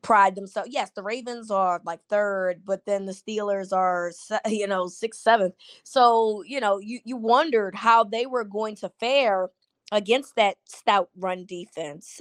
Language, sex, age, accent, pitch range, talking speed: English, female, 20-39, American, 185-225 Hz, 165 wpm